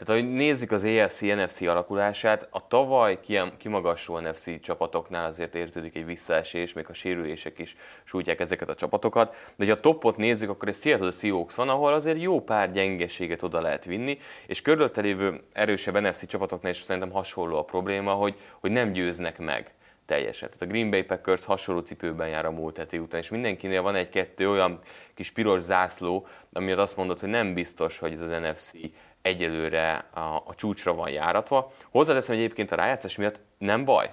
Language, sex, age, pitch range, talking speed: English, male, 30-49, 85-105 Hz, 180 wpm